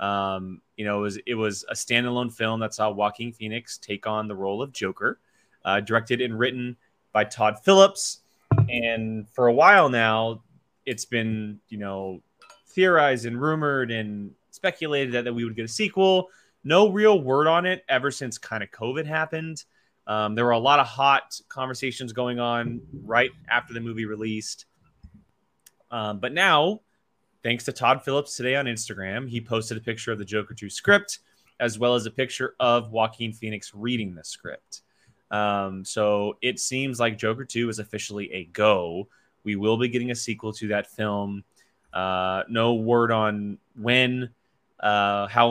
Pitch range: 105-125 Hz